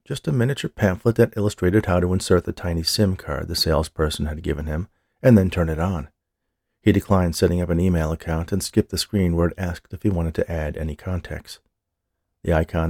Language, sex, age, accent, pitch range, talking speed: English, male, 40-59, American, 85-105 Hz, 215 wpm